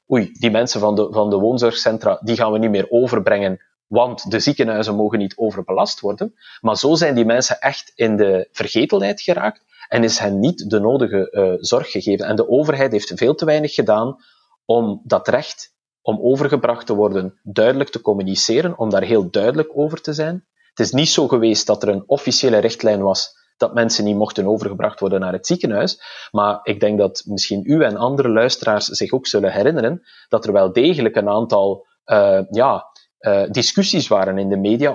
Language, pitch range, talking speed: Dutch, 100-130 Hz, 190 wpm